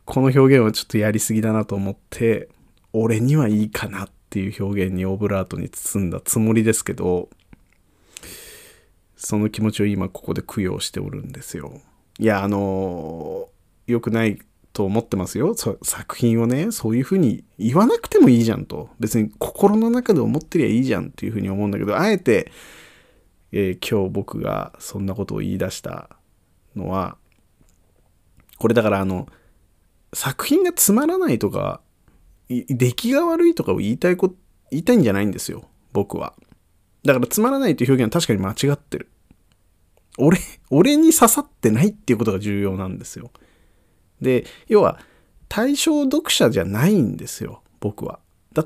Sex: male